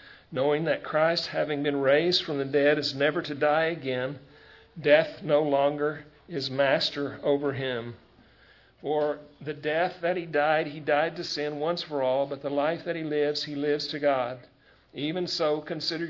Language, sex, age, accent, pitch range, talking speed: English, male, 50-69, American, 140-155 Hz, 175 wpm